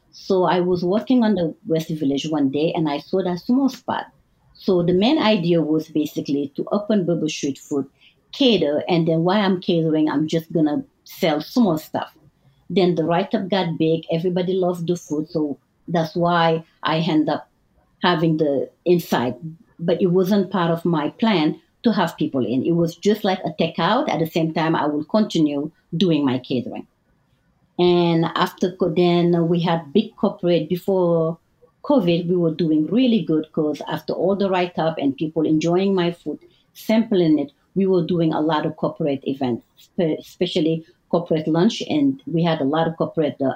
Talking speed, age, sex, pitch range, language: 180 wpm, 50-69, female, 155-180 Hz, English